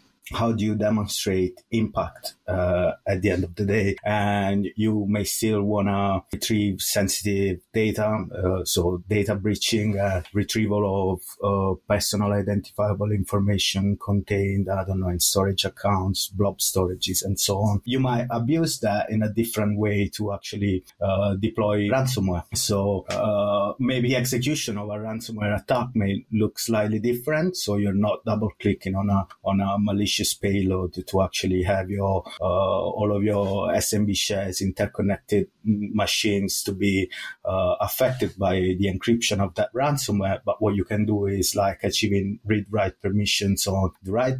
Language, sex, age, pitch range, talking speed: English, male, 30-49, 95-105 Hz, 155 wpm